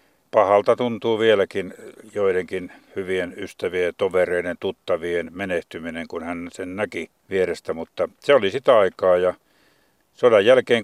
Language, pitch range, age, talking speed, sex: Finnish, 100-130 Hz, 60-79, 120 wpm, male